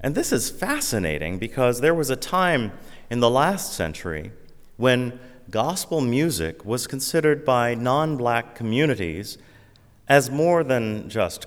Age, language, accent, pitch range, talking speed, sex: 30-49, English, American, 85-120 Hz, 130 wpm, male